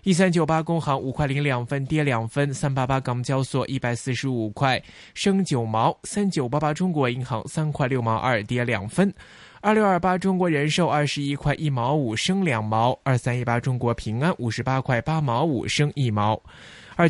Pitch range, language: 125-160 Hz, Chinese